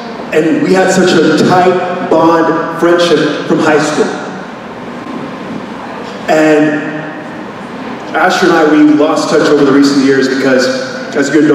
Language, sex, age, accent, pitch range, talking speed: English, male, 20-39, American, 165-240 Hz, 130 wpm